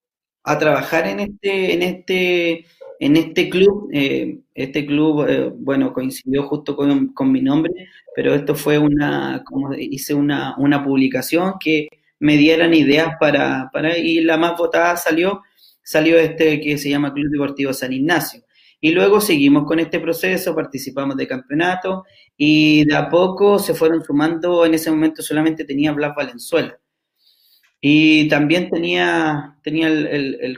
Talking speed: 155 wpm